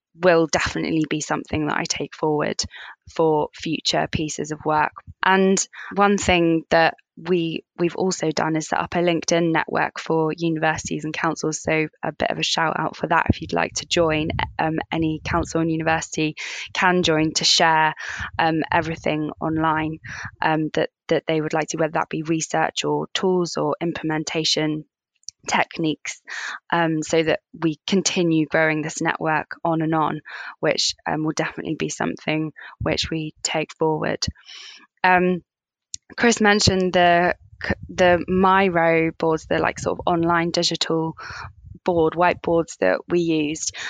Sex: female